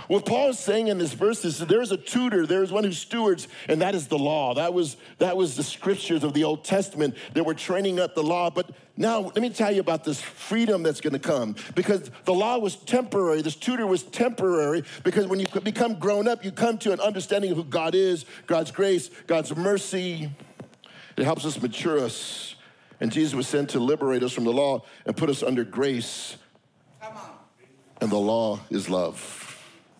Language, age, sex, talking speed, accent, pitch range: English, 50-69, male, 210 wpm, American, 140-190 Hz